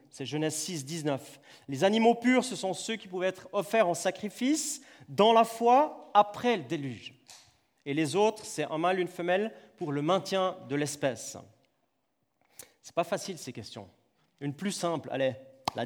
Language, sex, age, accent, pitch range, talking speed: French, male, 30-49, French, 135-205 Hz, 175 wpm